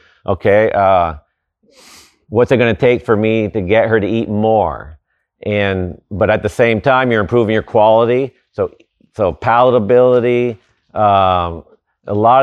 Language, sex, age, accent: English, male, 50-69, American